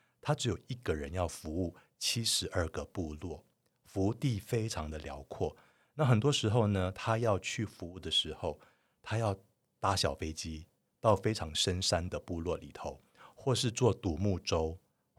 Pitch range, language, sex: 85-110 Hz, Chinese, male